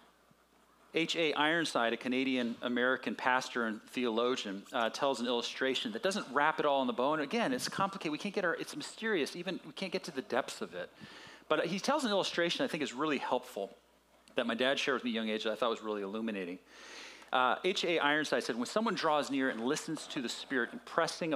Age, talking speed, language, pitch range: 40-59, 220 wpm, English, 115-160 Hz